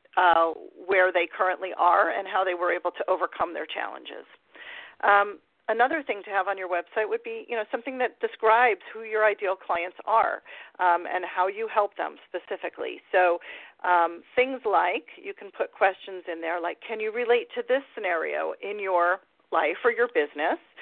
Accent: American